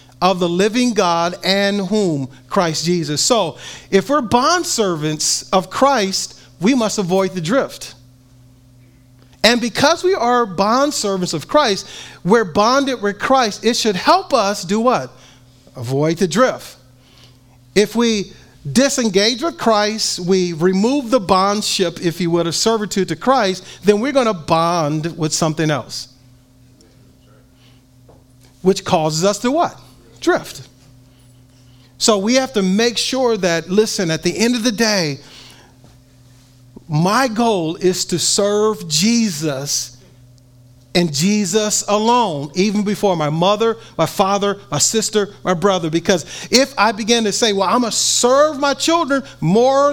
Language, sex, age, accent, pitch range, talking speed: English, male, 40-59, American, 145-230 Hz, 140 wpm